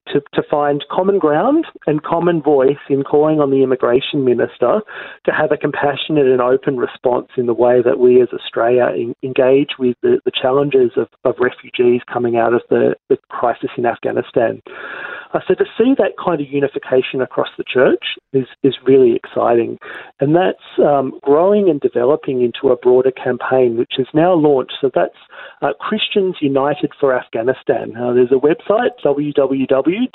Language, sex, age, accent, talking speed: English, male, 40-59, Australian, 170 wpm